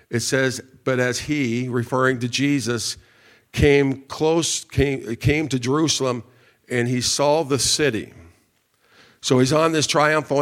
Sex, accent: male, American